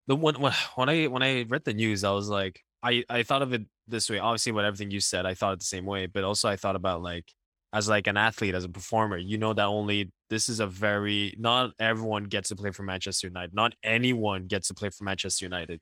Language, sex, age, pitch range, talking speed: English, male, 10-29, 95-115 Hz, 255 wpm